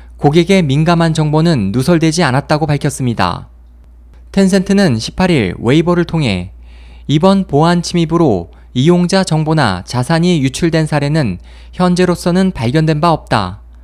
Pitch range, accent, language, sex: 110-175 Hz, native, Korean, male